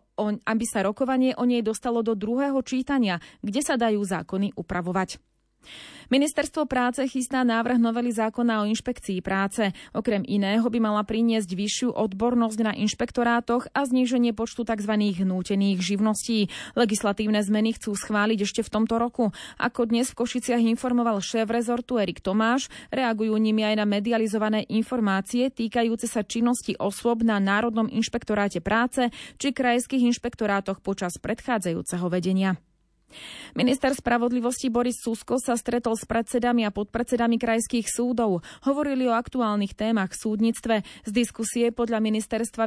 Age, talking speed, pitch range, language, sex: 30-49, 135 wpm, 210-240 Hz, Slovak, female